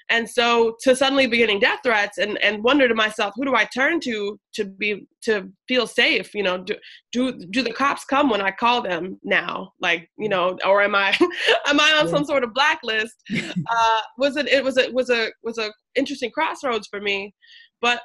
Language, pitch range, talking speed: English, 195-245 Hz, 210 wpm